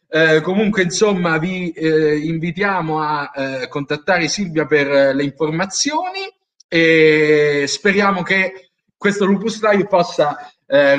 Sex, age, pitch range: male, 30-49, 155-225 Hz